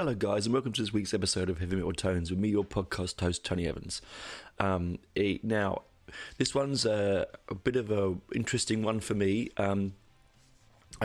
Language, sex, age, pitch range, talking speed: English, male, 30-49, 95-110 Hz, 185 wpm